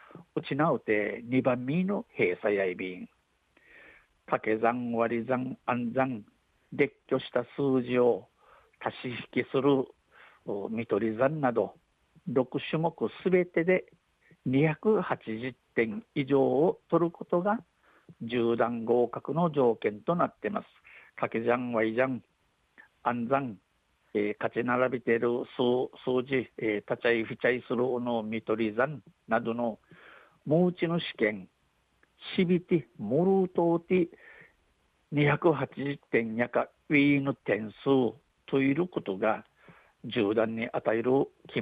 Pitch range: 115-160 Hz